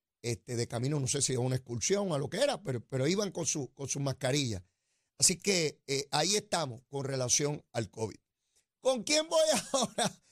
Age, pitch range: 30-49, 145-235 Hz